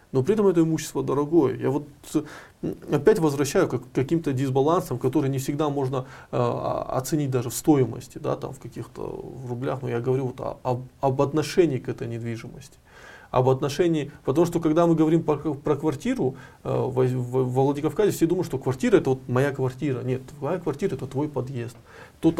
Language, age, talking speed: Russian, 20-39, 165 wpm